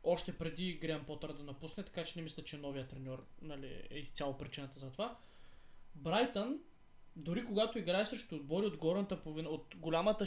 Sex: male